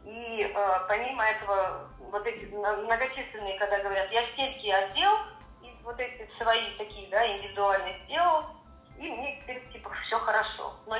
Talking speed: 145 wpm